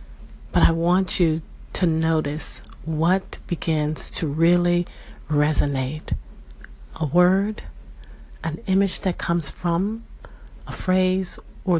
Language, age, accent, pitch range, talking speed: English, 50-69, American, 145-170 Hz, 105 wpm